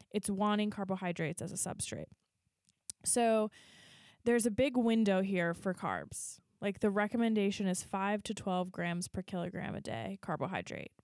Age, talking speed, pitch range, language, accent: 20-39, 145 wpm, 185-225 Hz, English, American